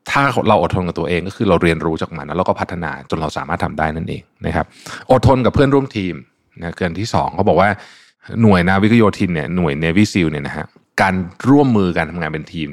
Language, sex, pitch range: Thai, male, 85-110 Hz